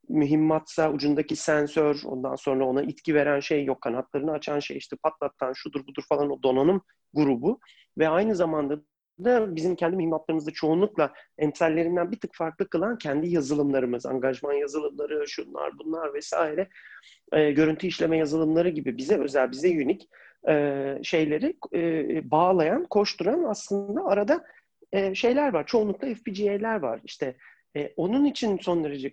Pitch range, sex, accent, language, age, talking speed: 145-190 Hz, male, native, Turkish, 40-59, 140 wpm